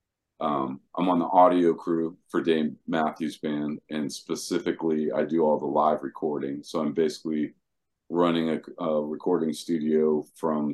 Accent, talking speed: American, 150 wpm